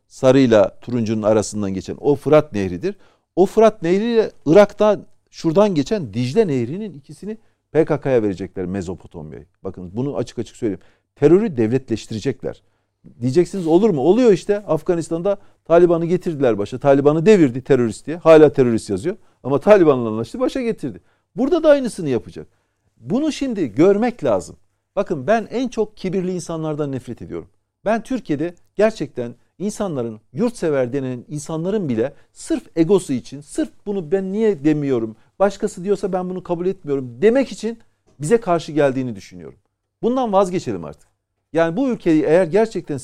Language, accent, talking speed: Turkish, native, 140 wpm